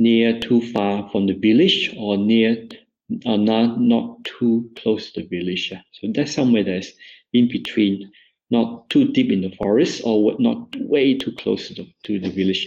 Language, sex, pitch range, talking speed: English, male, 95-115 Hz, 180 wpm